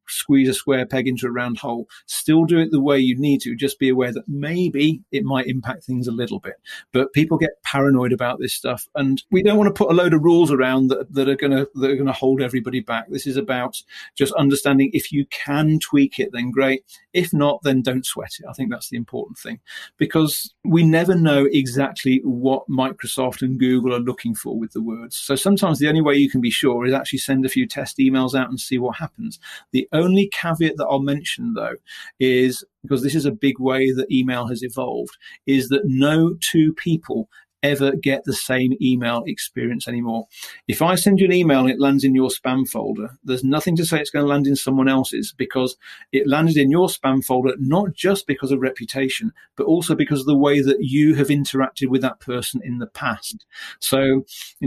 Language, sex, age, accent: English, male, 40-59, British